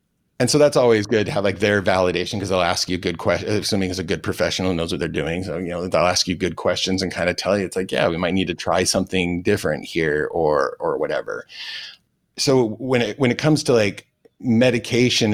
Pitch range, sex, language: 95-125 Hz, male, English